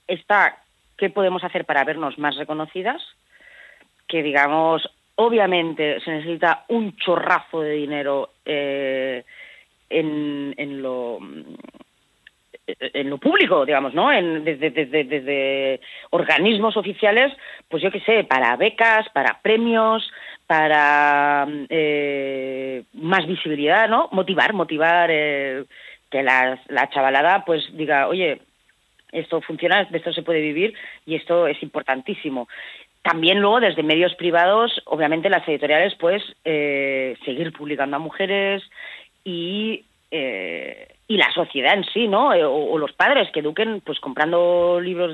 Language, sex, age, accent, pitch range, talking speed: Spanish, female, 30-49, Spanish, 145-190 Hz, 130 wpm